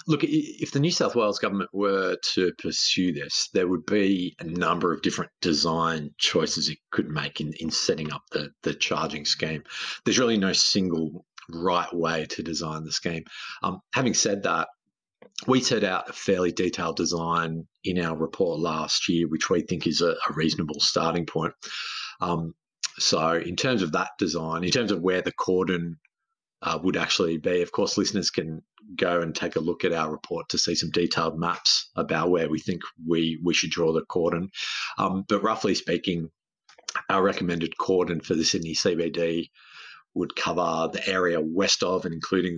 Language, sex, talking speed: English, male, 180 wpm